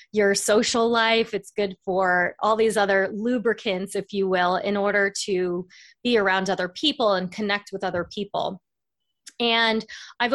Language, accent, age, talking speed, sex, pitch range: English, American, 20-39, 155 wpm, female, 185-225 Hz